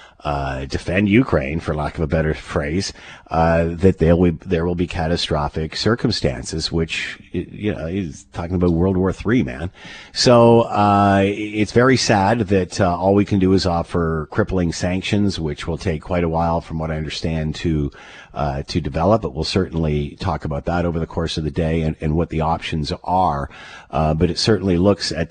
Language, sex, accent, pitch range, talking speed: English, male, American, 80-95 Hz, 195 wpm